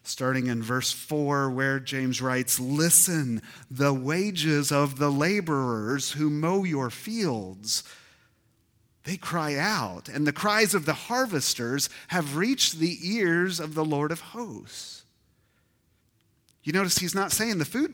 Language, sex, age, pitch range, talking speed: English, male, 40-59, 115-150 Hz, 140 wpm